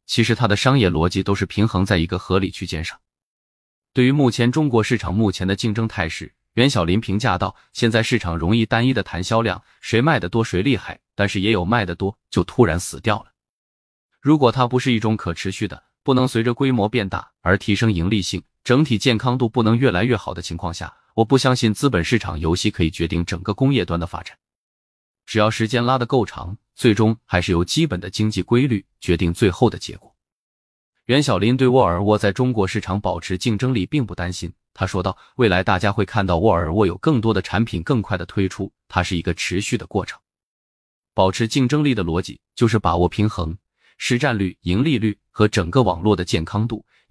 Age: 20-39